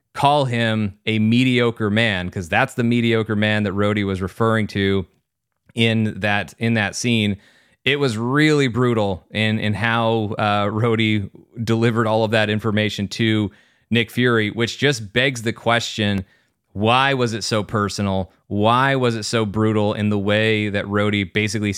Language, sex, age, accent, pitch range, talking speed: English, male, 30-49, American, 105-125 Hz, 160 wpm